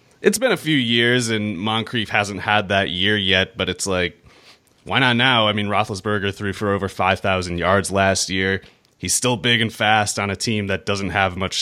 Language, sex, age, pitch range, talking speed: English, male, 30-49, 95-115 Hz, 205 wpm